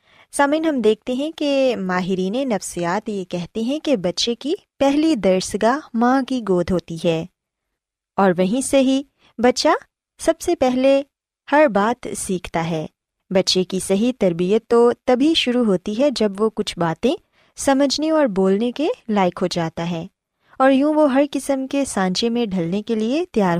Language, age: Urdu, 20-39